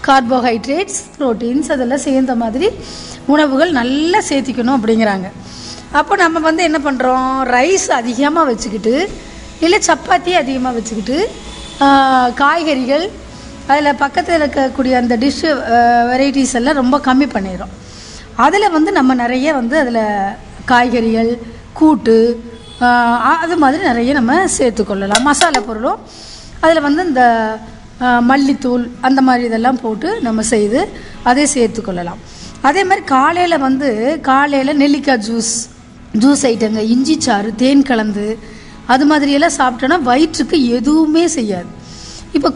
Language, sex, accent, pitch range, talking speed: Tamil, female, native, 245-305 Hz, 110 wpm